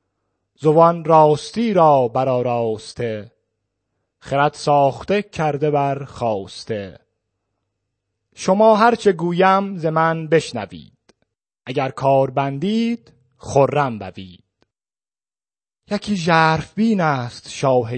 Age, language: 30-49, Persian